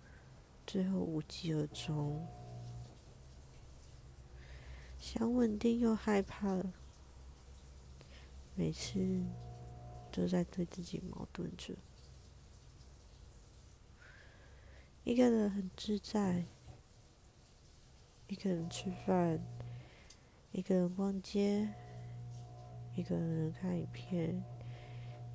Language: Chinese